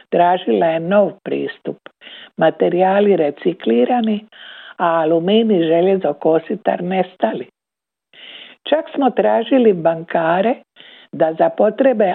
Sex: female